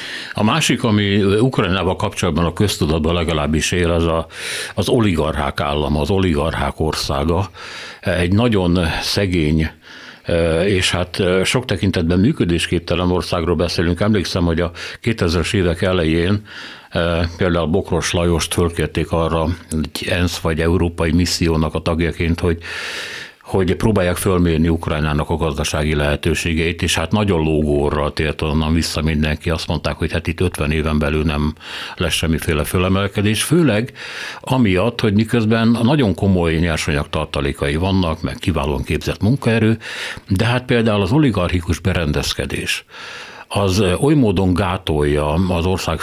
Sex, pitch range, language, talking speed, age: male, 80-100 Hz, Hungarian, 125 wpm, 60-79